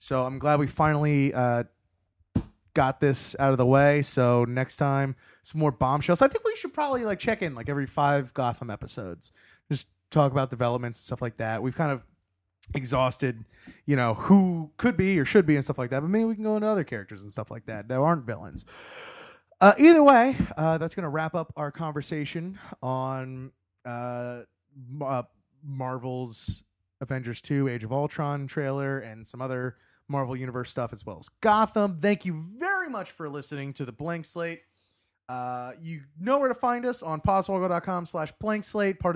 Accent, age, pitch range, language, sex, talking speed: American, 20-39, 130-205 Hz, English, male, 190 wpm